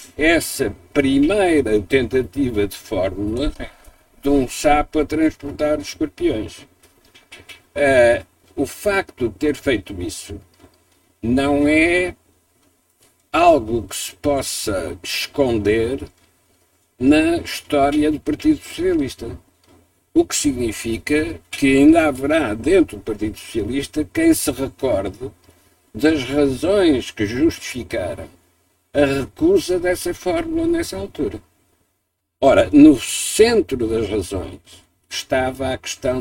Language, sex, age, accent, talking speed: Portuguese, male, 60-79, Portuguese, 100 wpm